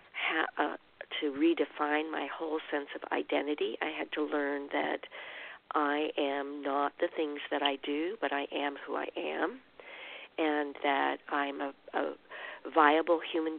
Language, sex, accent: English, female, American